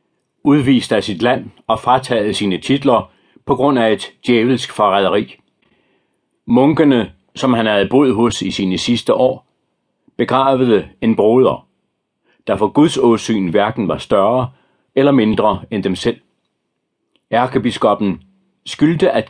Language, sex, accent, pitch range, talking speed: Danish, male, native, 105-130 Hz, 130 wpm